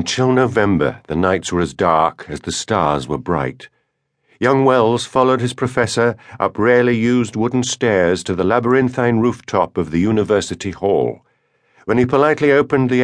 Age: 50-69